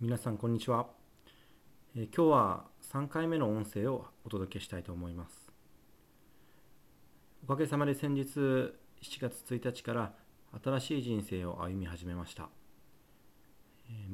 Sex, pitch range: male, 100-130 Hz